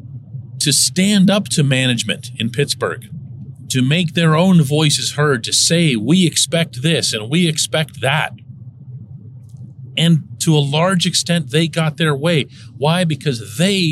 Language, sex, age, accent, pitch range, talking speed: English, male, 40-59, American, 125-170 Hz, 145 wpm